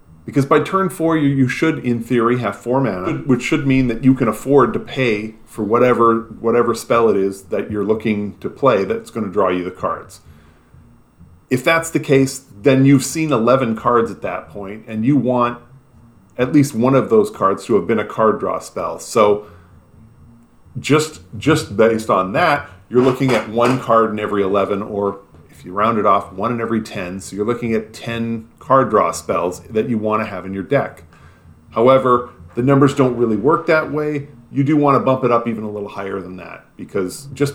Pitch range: 100-130 Hz